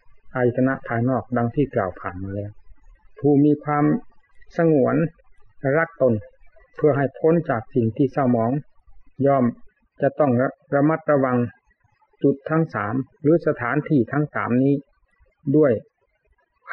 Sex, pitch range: male, 120-145 Hz